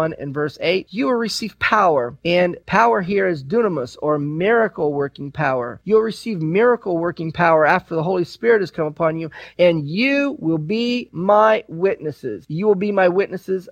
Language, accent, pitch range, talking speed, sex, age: English, American, 160-205 Hz, 175 wpm, male, 40-59